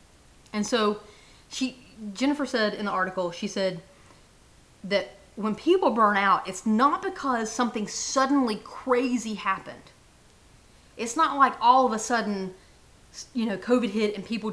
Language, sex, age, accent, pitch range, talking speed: English, female, 30-49, American, 200-260 Hz, 140 wpm